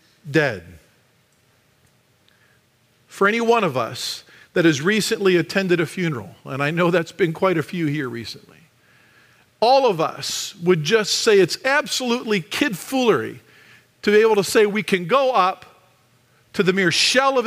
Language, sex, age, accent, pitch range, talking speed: English, male, 50-69, American, 125-190 Hz, 160 wpm